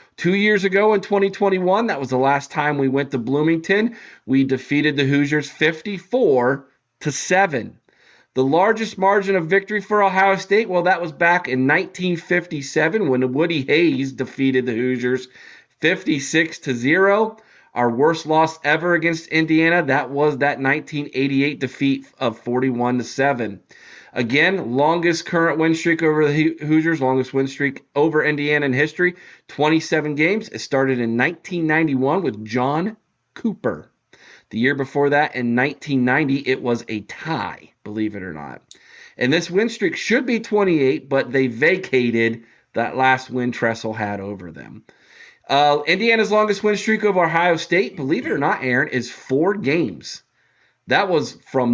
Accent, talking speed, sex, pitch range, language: American, 150 wpm, male, 130-180 Hz, English